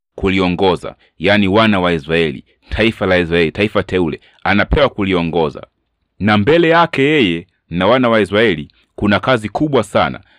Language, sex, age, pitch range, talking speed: Swahili, male, 30-49, 90-115 Hz, 140 wpm